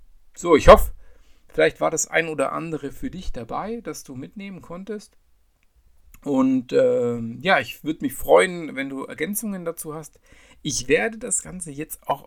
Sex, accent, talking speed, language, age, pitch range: male, German, 165 wpm, German, 50-69, 135-220 Hz